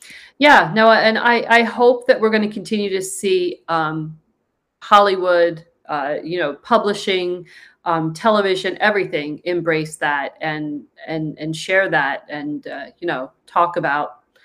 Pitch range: 170-220 Hz